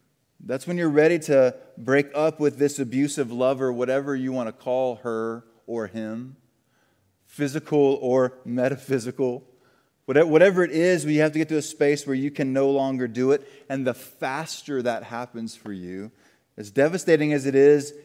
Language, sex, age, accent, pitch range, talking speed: English, male, 20-39, American, 110-135 Hz, 170 wpm